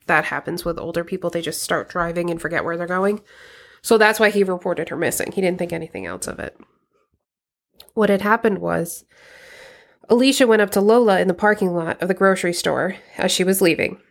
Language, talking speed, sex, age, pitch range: English, 210 wpm, female, 20-39, 180-220 Hz